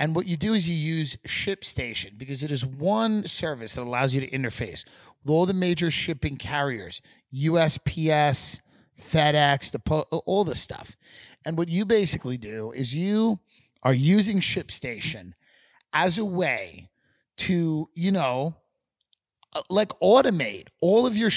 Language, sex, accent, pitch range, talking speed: English, male, American, 140-195 Hz, 140 wpm